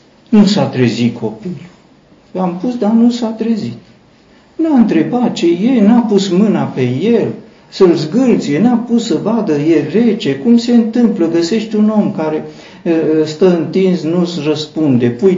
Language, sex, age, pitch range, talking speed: Romanian, male, 50-69, 145-235 Hz, 160 wpm